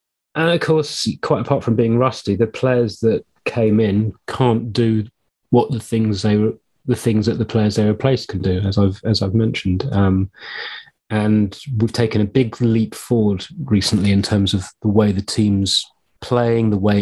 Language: English